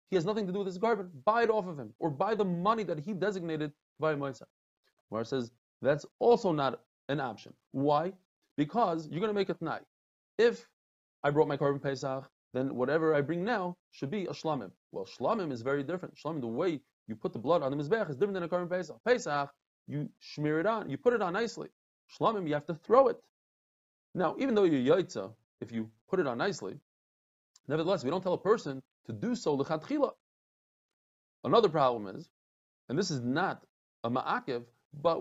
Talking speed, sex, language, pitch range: 205 wpm, male, English, 140-200 Hz